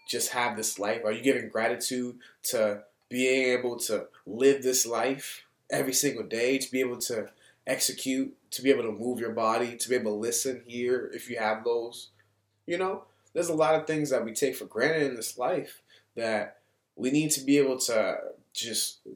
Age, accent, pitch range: 20-39, American, 120-155 Hz